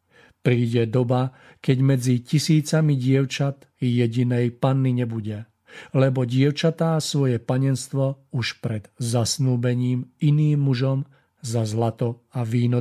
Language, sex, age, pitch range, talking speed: Slovak, male, 50-69, 120-135 Hz, 105 wpm